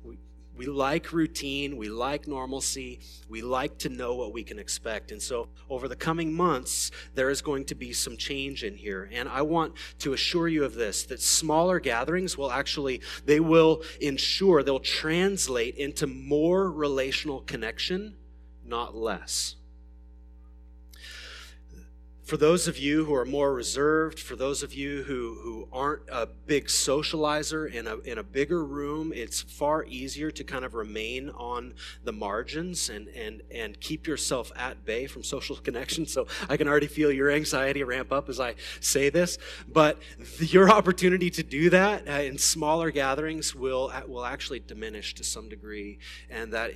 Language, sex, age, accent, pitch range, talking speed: English, male, 30-49, American, 110-155 Hz, 165 wpm